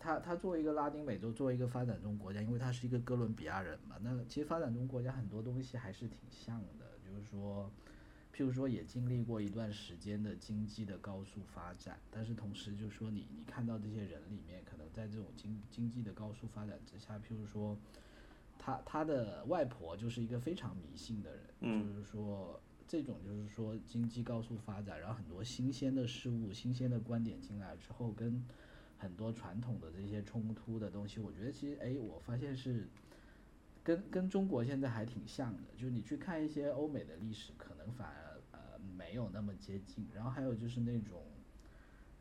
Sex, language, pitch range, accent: male, Chinese, 105-125 Hz, native